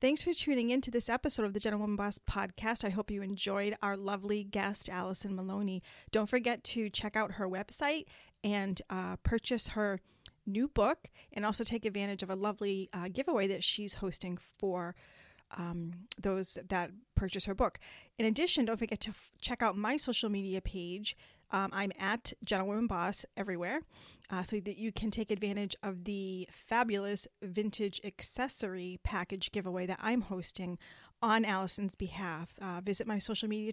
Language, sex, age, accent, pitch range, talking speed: English, female, 30-49, American, 185-220 Hz, 170 wpm